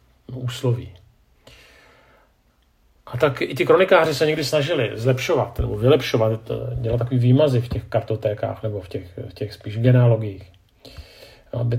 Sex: male